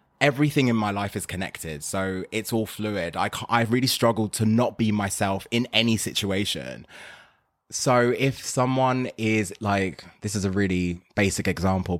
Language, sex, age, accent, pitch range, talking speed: English, male, 20-39, British, 95-115 Hz, 165 wpm